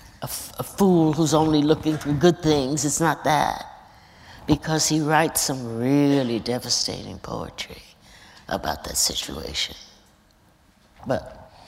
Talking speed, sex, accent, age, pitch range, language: 125 wpm, female, American, 60-79, 135-170 Hz, English